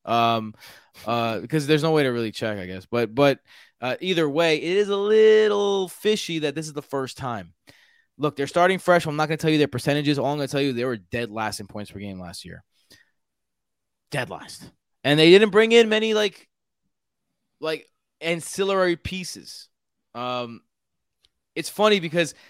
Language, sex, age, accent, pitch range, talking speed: English, male, 20-39, American, 115-155 Hz, 190 wpm